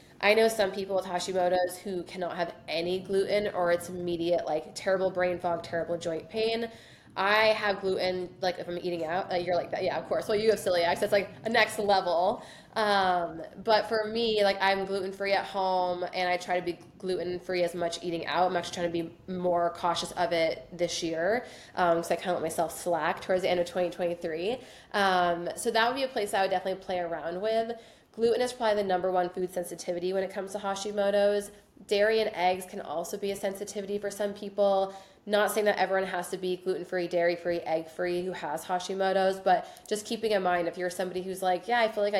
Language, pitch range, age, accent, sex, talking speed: English, 175-200 Hz, 20-39, American, female, 225 wpm